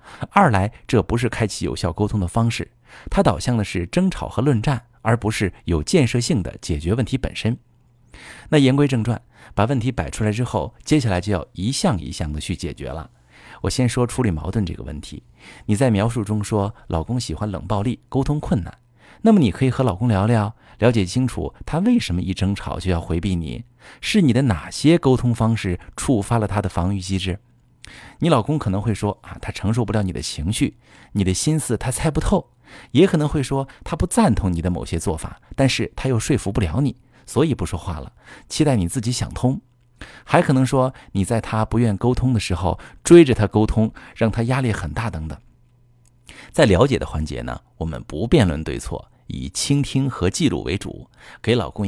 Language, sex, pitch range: Chinese, male, 95-130 Hz